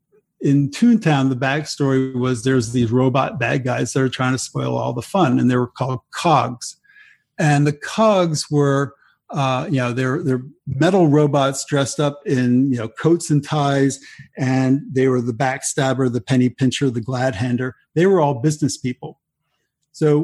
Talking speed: 170 wpm